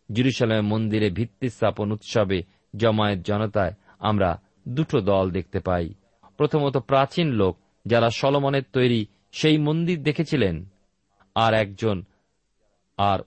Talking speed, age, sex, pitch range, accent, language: 110 wpm, 40-59, male, 100-150 Hz, native, Bengali